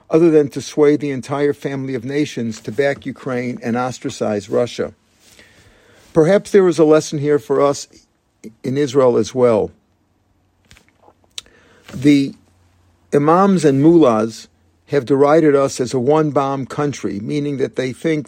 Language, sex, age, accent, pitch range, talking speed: English, male, 50-69, American, 125-155 Hz, 140 wpm